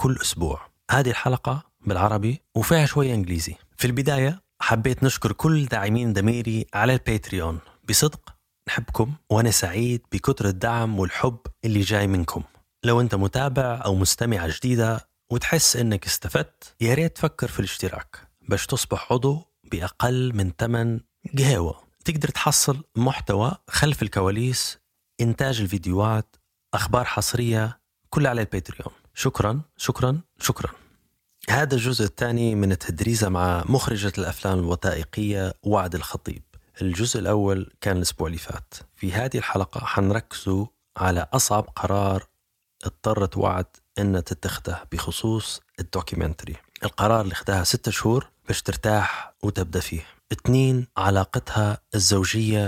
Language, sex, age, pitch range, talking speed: Arabic, male, 30-49, 95-125 Hz, 120 wpm